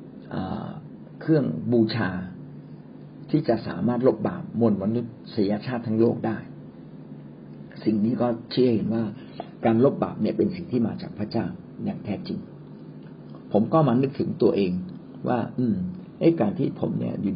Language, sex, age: Thai, male, 60-79